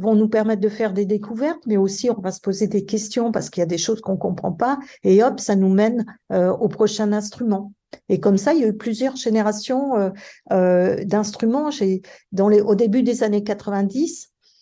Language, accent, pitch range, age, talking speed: French, French, 195-240 Hz, 50-69, 220 wpm